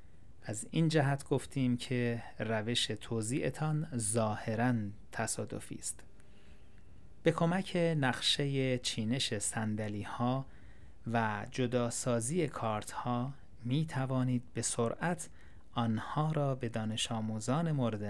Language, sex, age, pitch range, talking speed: Persian, male, 30-49, 105-130 Hz, 100 wpm